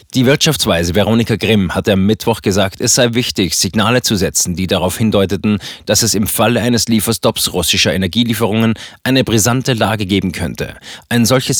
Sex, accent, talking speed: male, German, 165 wpm